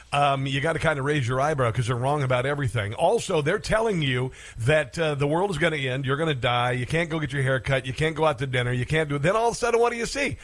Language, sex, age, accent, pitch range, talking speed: English, male, 50-69, American, 135-165 Hz, 320 wpm